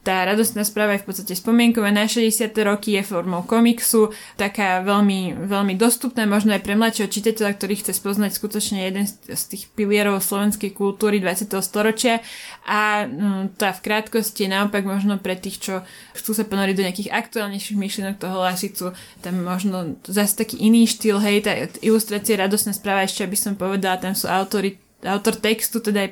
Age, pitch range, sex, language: 20-39, 195-230 Hz, female, Slovak